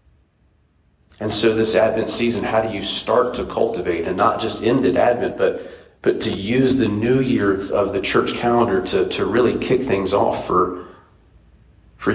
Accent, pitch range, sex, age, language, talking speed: American, 85-125 Hz, male, 40-59, English, 185 wpm